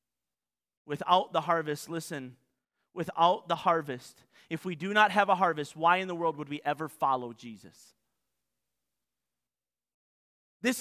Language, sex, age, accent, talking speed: English, male, 30-49, American, 135 wpm